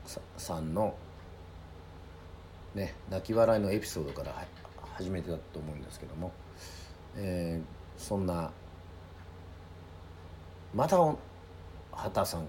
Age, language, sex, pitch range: 50-69, Japanese, male, 80-95 Hz